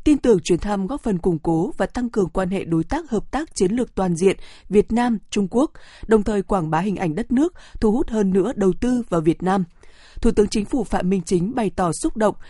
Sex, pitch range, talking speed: female, 180-235 Hz, 250 wpm